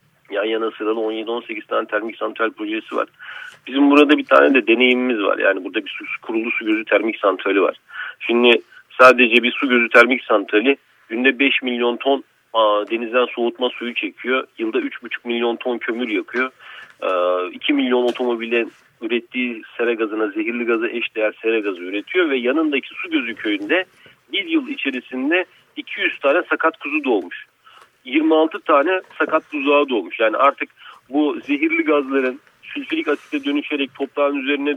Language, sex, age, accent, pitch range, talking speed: Turkish, male, 40-59, native, 120-180 Hz, 155 wpm